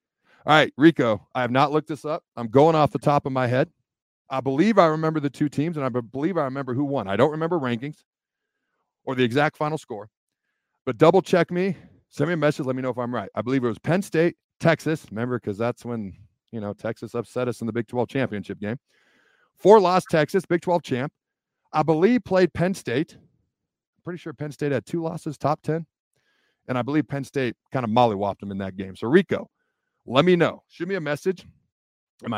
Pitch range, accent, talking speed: 120-160 Hz, American, 220 wpm